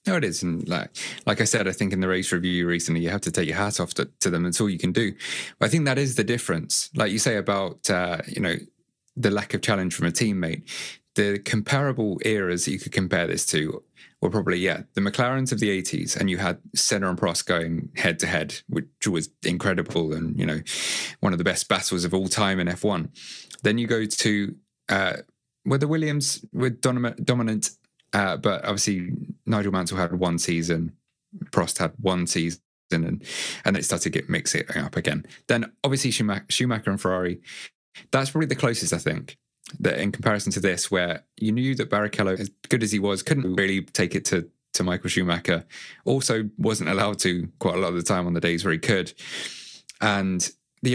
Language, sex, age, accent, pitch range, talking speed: English, male, 20-39, British, 90-120 Hz, 205 wpm